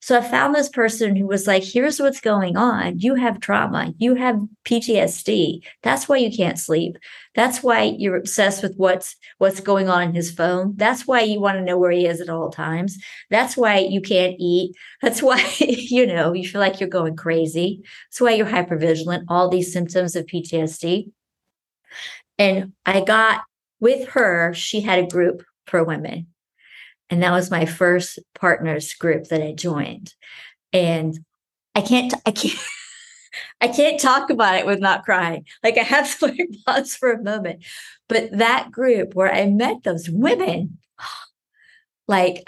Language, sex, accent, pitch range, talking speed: English, female, American, 175-235 Hz, 175 wpm